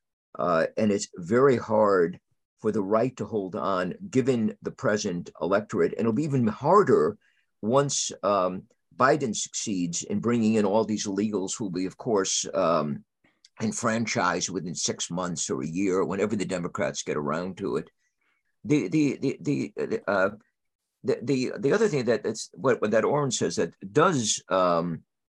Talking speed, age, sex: 165 wpm, 50-69, male